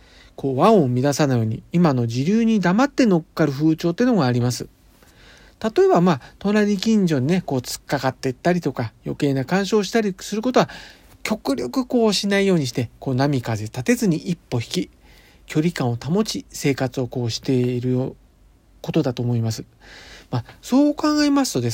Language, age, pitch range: Japanese, 40-59, 125-195 Hz